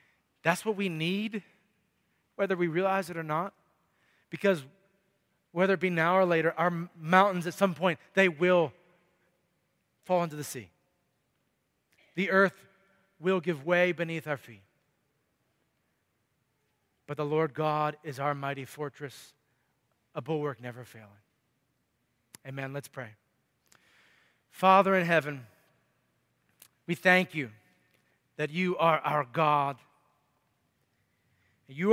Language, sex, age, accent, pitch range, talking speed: English, male, 30-49, American, 150-195 Hz, 120 wpm